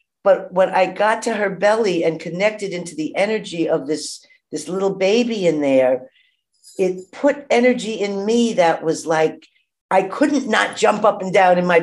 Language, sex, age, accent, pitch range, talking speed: English, female, 50-69, American, 155-240 Hz, 185 wpm